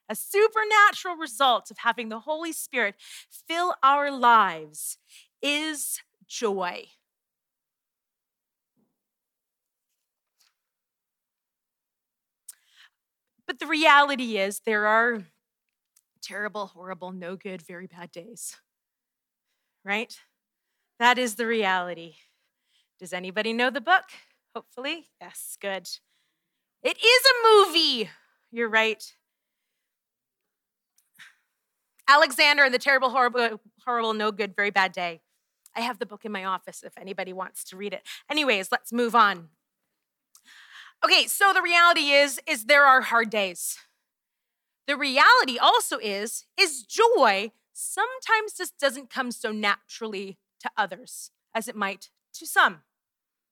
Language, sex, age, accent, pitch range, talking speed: English, female, 30-49, American, 205-300 Hz, 115 wpm